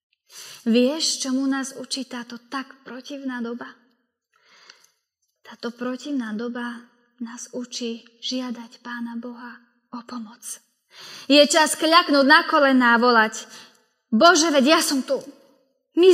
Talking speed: 115 wpm